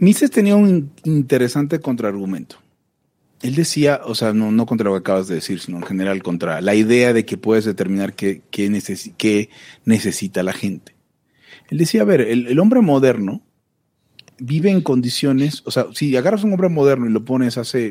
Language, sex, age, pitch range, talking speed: Spanish, male, 40-59, 115-175 Hz, 190 wpm